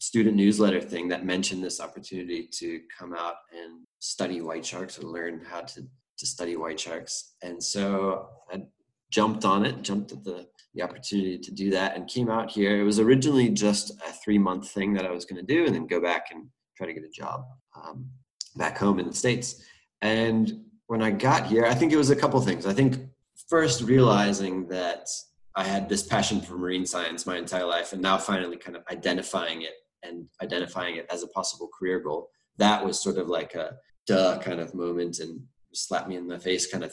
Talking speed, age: 210 wpm, 20-39